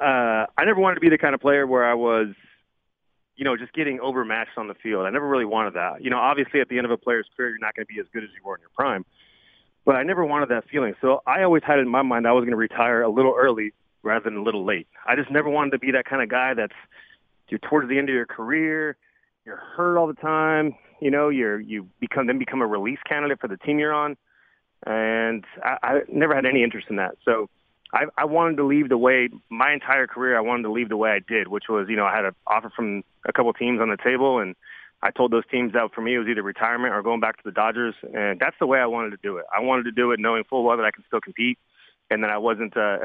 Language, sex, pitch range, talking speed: English, male, 110-140 Hz, 280 wpm